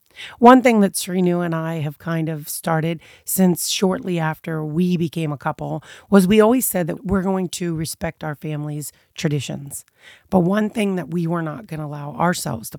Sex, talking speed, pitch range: female, 190 wpm, 155-195 Hz